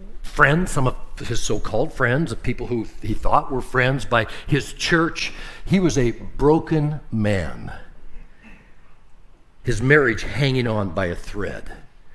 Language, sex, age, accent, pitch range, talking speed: English, male, 60-79, American, 105-145 Hz, 135 wpm